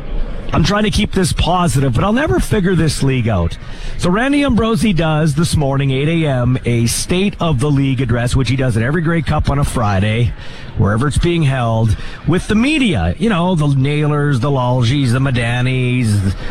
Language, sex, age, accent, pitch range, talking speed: English, male, 40-59, American, 130-200 Hz, 190 wpm